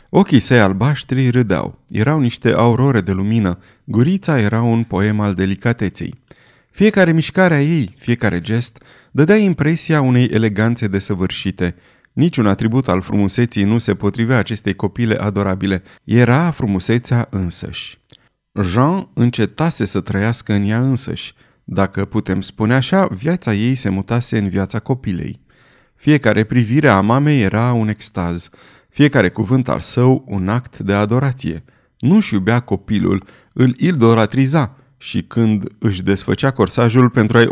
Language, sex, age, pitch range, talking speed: Romanian, male, 30-49, 100-130 Hz, 135 wpm